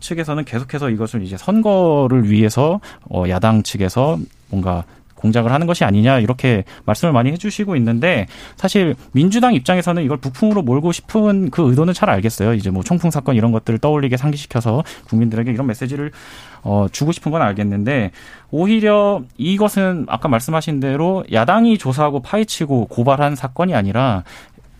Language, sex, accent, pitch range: Korean, male, native, 115-165 Hz